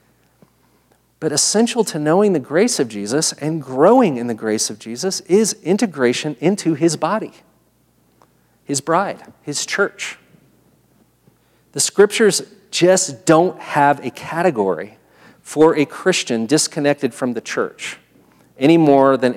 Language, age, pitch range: English, 40-59, 135-180 Hz